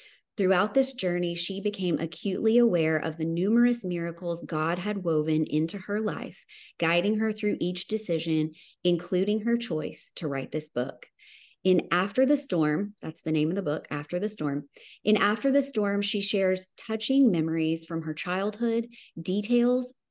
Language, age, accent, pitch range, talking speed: English, 30-49, American, 165-225 Hz, 160 wpm